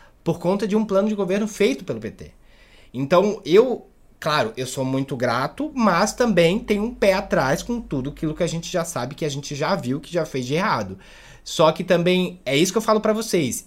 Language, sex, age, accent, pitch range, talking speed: Portuguese, male, 20-39, Brazilian, 140-205 Hz, 225 wpm